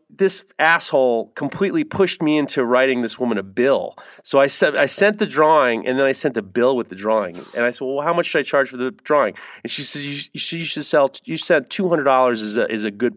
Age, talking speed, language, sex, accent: 30-49, 255 wpm, English, male, American